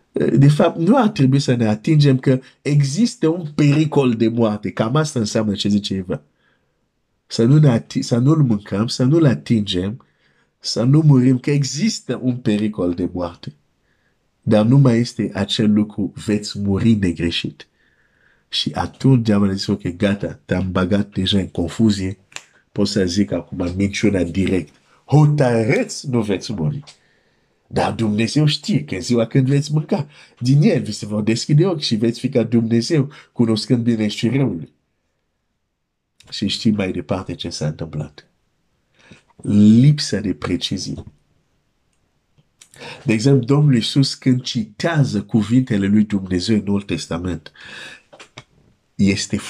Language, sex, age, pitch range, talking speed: Romanian, male, 50-69, 100-140 Hz, 135 wpm